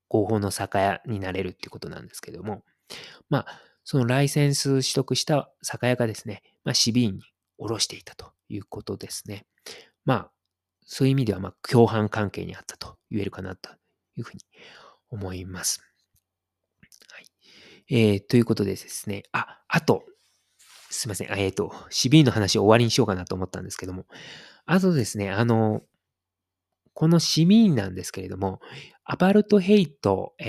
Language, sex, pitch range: Japanese, male, 95-135 Hz